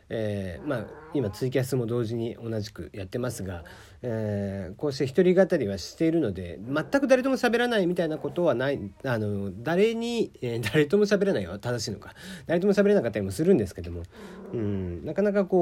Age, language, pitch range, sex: 40-59, Japanese, 100-160 Hz, male